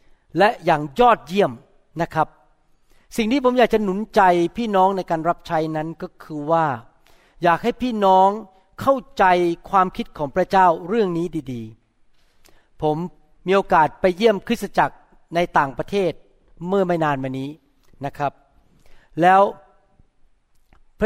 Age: 60-79